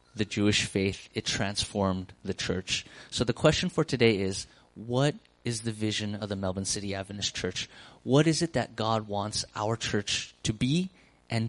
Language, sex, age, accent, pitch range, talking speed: English, male, 30-49, American, 100-140 Hz, 180 wpm